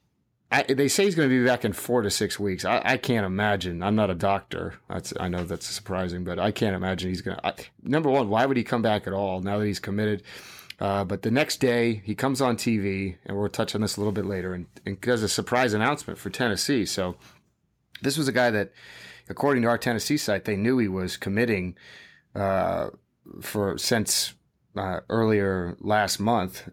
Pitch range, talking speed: 95-115 Hz, 210 wpm